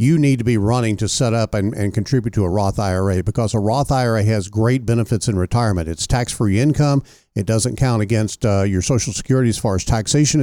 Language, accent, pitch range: English, American, 110-150 Hz